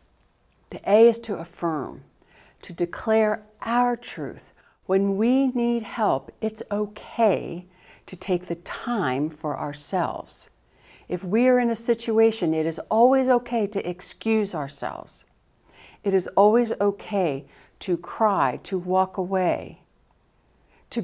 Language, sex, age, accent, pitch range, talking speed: English, female, 60-79, American, 170-225 Hz, 125 wpm